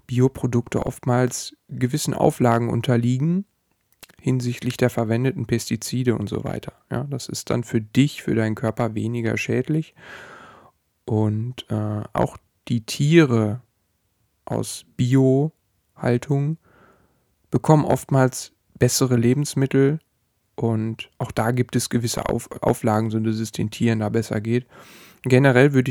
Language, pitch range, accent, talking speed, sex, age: German, 115-135 Hz, German, 120 wpm, male, 10-29